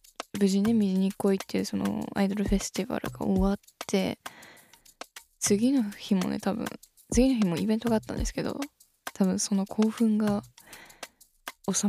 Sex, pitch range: female, 185-225 Hz